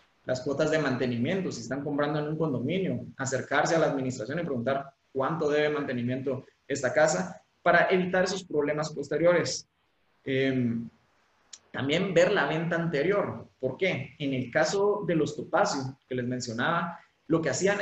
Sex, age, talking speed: male, 20-39, 155 wpm